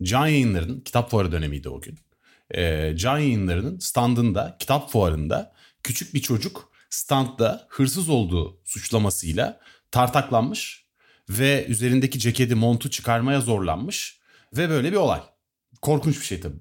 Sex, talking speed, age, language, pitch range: male, 125 wpm, 40-59, Turkish, 95-140 Hz